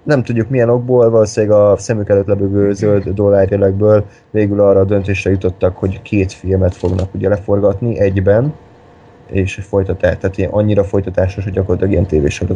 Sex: male